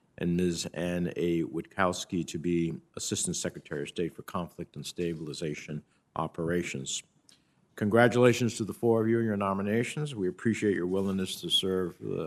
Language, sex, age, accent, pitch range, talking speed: English, male, 60-79, American, 90-110 Hz, 150 wpm